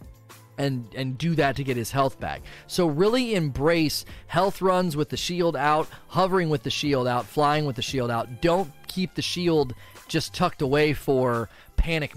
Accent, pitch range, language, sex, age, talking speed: American, 115-150 Hz, English, male, 30-49, 185 wpm